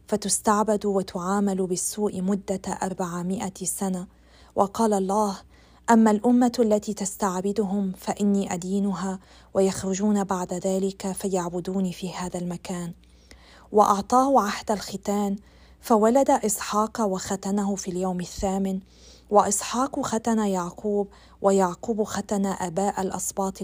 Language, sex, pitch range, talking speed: Arabic, female, 190-210 Hz, 95 wpm